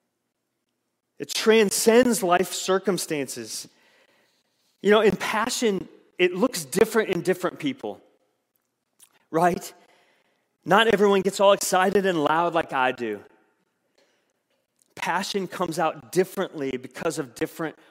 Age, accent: 30-49, American